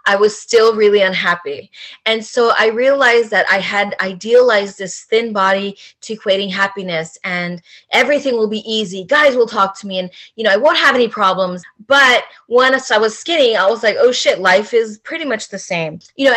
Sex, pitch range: female, 190-235 Hz